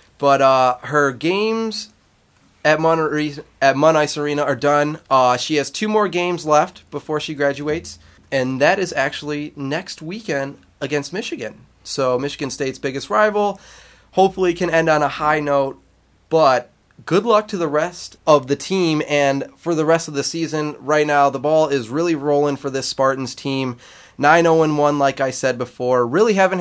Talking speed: 170 wpm